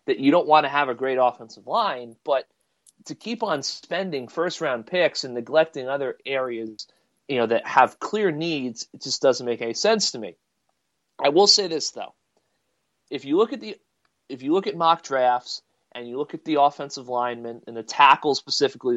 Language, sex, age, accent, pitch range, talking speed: English, male, 30-49, American, 120-165 Hz, 195 wpm